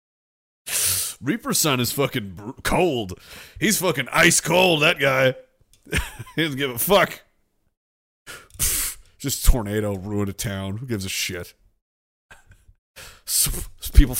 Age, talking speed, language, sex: 30-49, 115 wpm, English, male